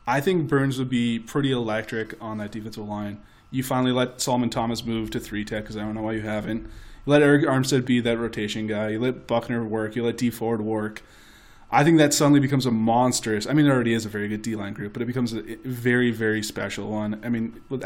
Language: English